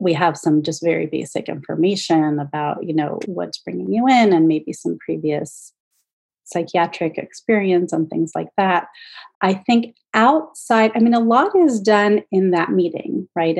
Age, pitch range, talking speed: 30-49, 160-190 Hz, 165 wpm